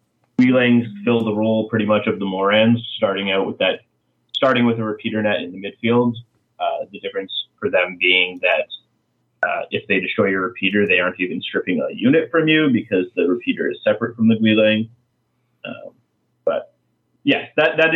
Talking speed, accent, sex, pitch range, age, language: 185 wpm, American, male, 105-130 Hz, 30-49, English